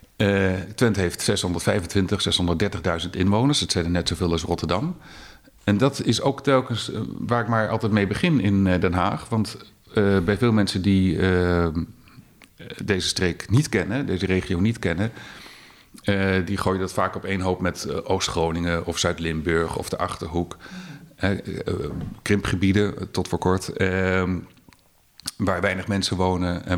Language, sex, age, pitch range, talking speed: Dutch, male, 50-69, 90-110 Hz, 160 wpm